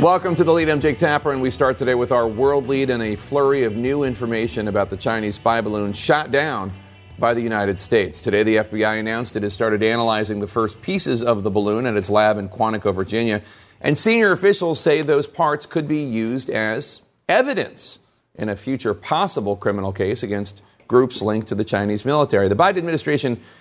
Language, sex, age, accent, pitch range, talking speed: English, male, 40-59, American, 110-135 Hz, 200 wpm